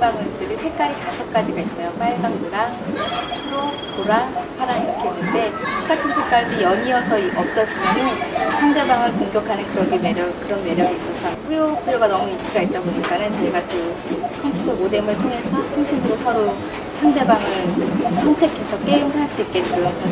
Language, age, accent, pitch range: Korean, 30-49, native, 110-180 Hz